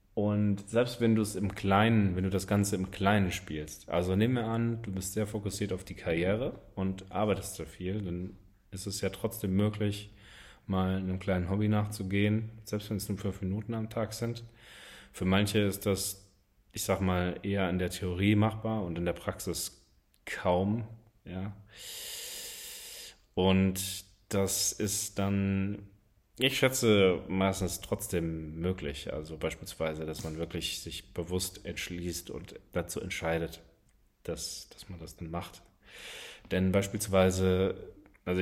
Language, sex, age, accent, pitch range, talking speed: German, male, 30-49, German, 90-105 Hz, 150 wpm